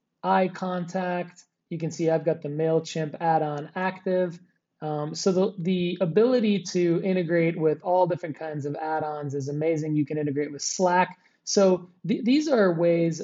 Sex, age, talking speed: male, 20-39, 165 wpm